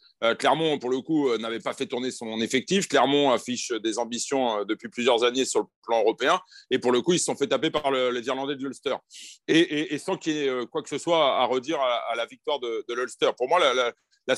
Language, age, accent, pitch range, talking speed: French, 40-59, French, 125-160 Hz, 275 wpm